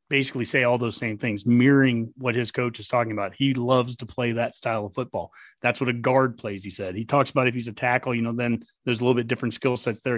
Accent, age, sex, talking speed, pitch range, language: American, 30-49, male, 270 wpm, 115-130 Hz, English